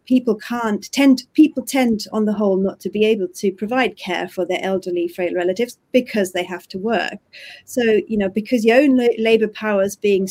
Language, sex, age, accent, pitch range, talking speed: English, female, 40-59, British, 185-220 Hz, 205 wpm